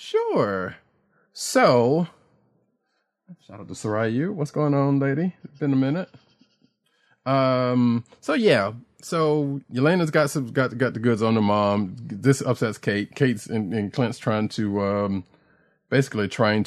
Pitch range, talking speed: 95-130 Hz, 140 wpm